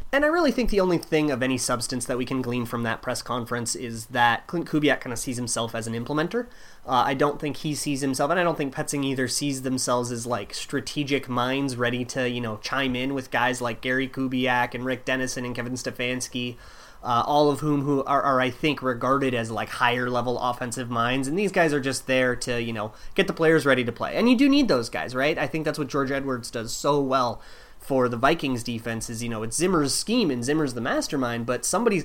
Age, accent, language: 30-49, American, English